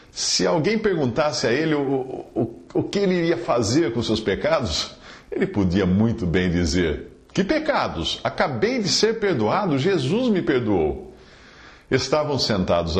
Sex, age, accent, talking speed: male, 50-69, Brazilian, 150 wpm